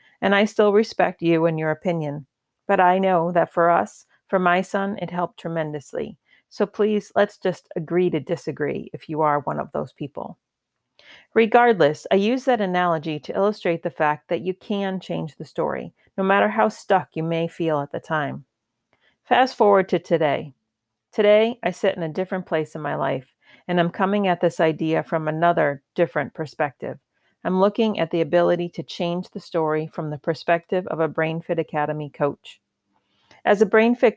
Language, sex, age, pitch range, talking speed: English, female, 40-59, 160-195 Hz, 180 wpm